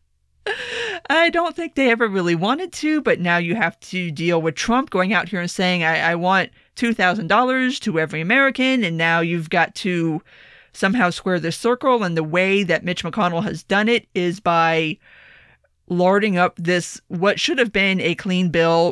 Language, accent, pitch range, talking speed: English, American, 175-245 Hz, 185 wpm